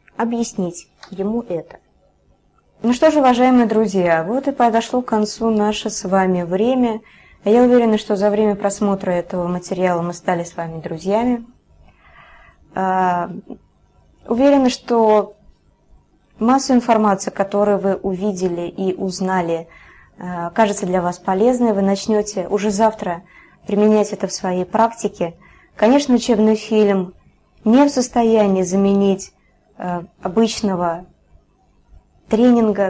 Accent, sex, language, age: native, female, Russian, 20-39